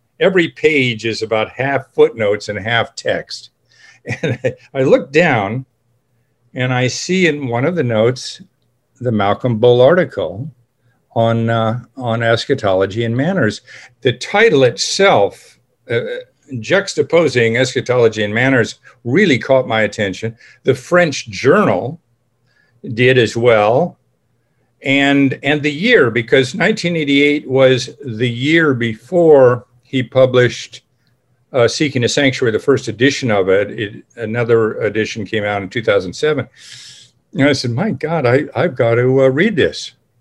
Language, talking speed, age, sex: English, 135 wpm, 50-69, male